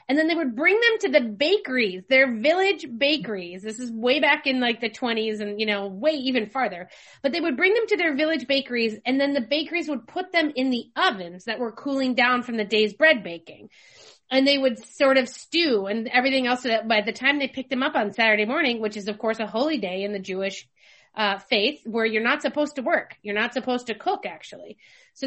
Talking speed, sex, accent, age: 235 wpm, female, American, 30-49